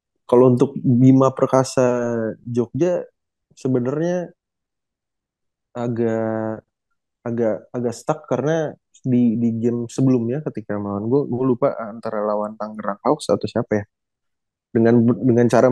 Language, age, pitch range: Indonesian, 20-39, 105-125 Hz